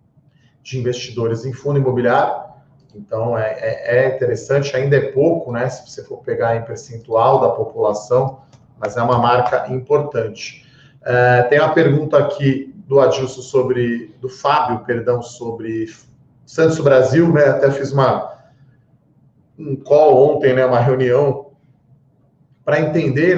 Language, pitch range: Portuguese, 120-140 Hz